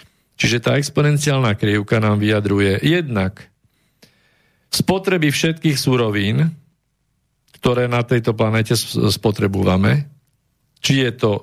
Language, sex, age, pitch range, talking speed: Slovak, male, 50-69, 110-145 Hz, 95 wpm